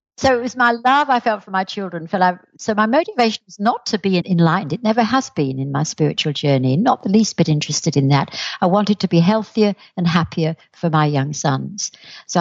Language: English